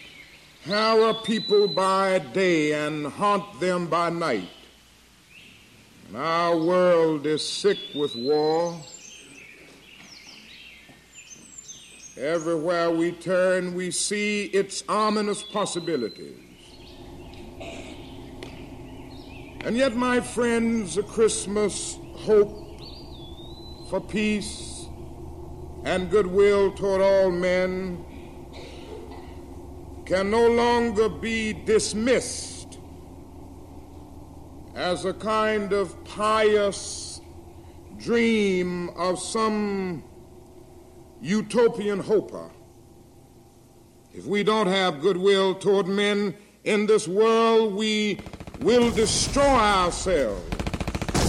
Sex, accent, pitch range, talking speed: male, American, 150-210 Hz, 80 wpm